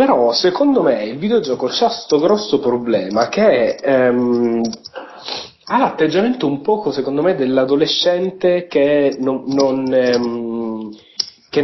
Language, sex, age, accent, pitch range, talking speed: Italian, male, 30-49, native, 120-165 Hz, 120 wpm